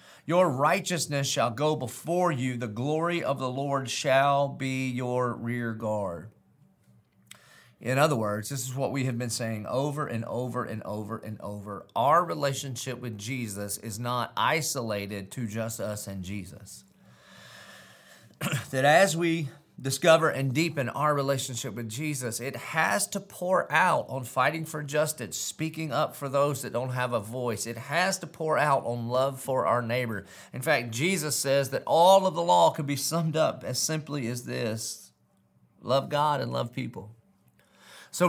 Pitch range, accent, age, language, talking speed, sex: 115-140 Hz, American, 40-59, English, 165 wpm, male